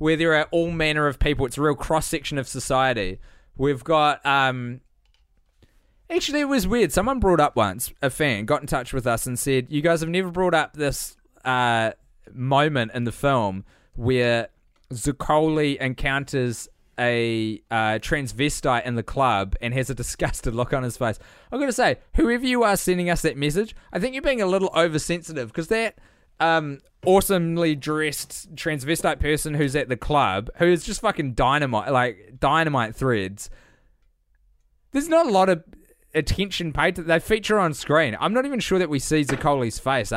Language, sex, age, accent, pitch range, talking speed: English, male, 20-39, Australian, 125-175 Hz, 180 wpm